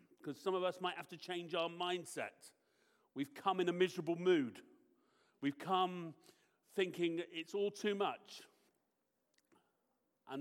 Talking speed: 140 wpm